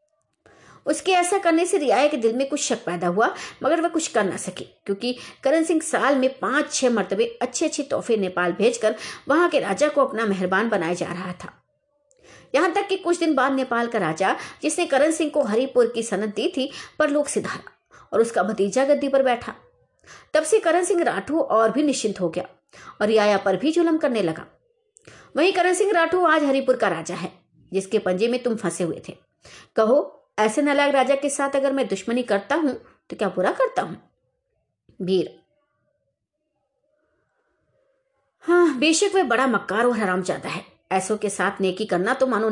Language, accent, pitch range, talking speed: Hindi, native, 210-320 Hz, 135 wpm